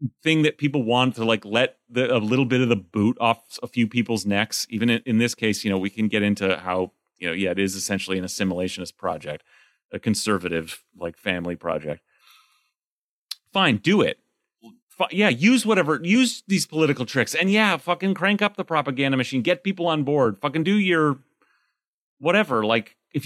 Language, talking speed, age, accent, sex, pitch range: English, 190 wpm, 30-49, American, male, 100-145 Hz